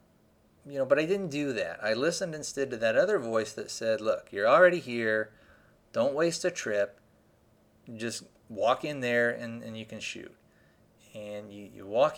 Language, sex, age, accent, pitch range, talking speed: English, male, 30-49, American, 110-145 Hz, 180 wpm